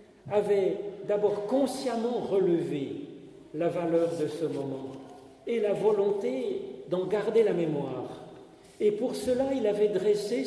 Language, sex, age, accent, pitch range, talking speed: French, male, 40-59, French, 160-225 Hz, 125 wpm